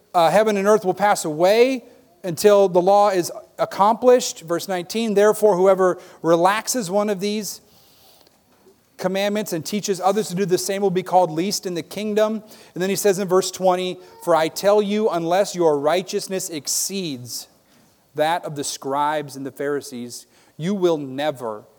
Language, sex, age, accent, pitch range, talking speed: English, male, 40-59, American, 165-200 Hz, 165 wpm